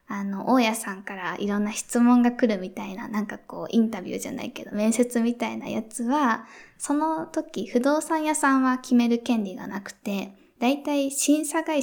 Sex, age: female, 20-39